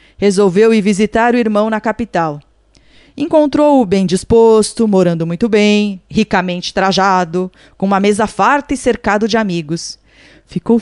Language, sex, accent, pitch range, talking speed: Portuguese, female, Brazilian, 190-265 Hz, 135 wpm